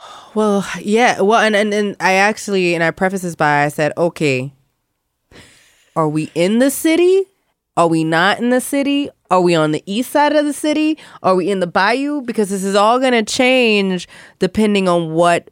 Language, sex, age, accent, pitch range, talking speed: English, female, 20-39, American, 145-180 Hz, 195 wpm